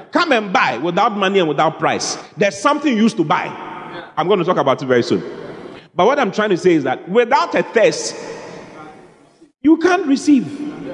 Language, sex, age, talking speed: English, male, 40-59, 195 wpm